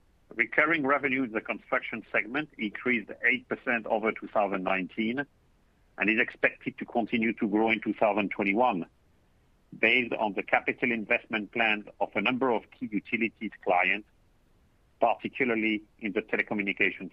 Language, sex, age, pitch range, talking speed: English, male, 50-69, 105-130 Hz, 125 wpm